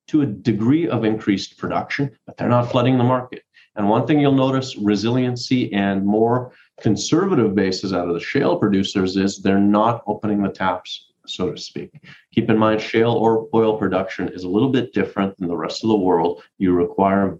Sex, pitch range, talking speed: male, 95-115 Hz, 195 wpm